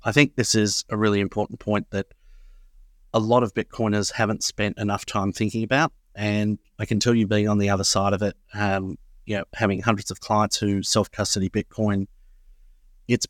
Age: 30-49